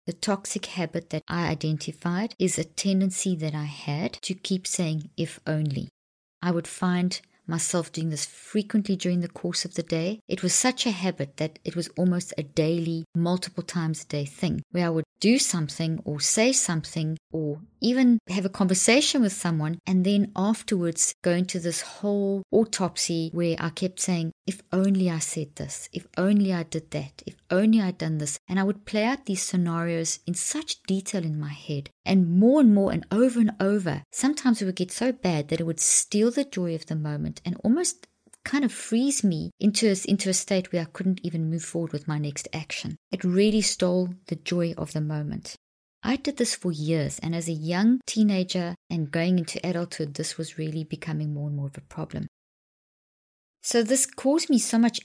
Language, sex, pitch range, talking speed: English, female, 160-200 Hz, 200 wpm